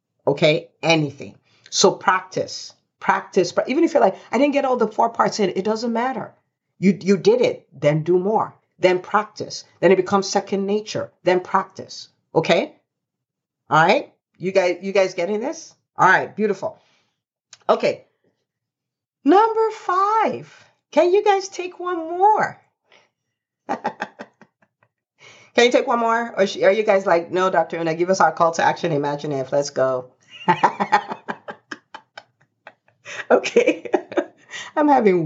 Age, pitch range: 50-69, 150-225 Hz